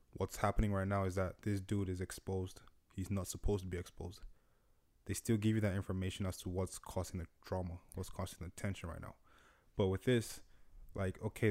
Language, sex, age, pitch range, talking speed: English, male, 20-39, 90-100 Hz, 205 wpm